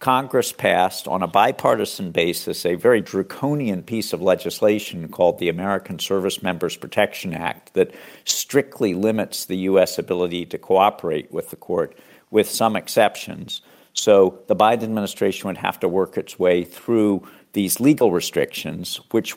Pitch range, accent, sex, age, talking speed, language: 95-110 Hz, American, male, 50-69, 150 wpm, English